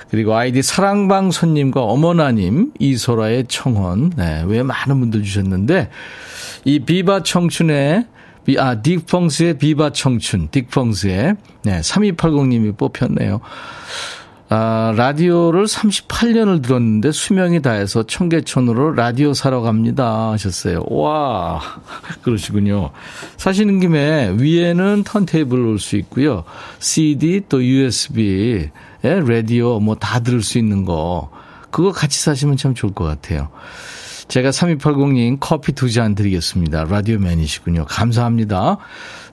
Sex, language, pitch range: male, Korean, 110-170 Hz